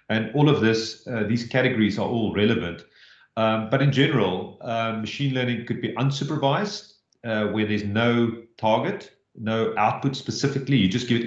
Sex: male